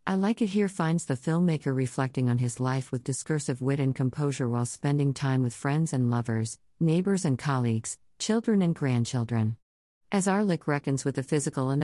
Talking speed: 180 wpm